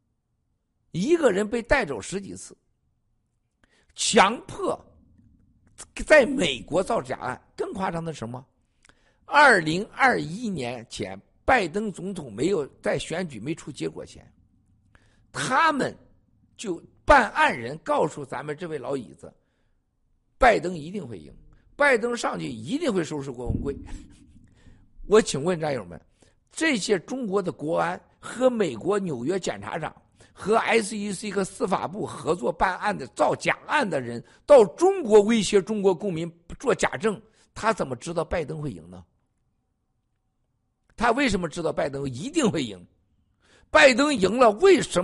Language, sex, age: Chinese, male, 50-69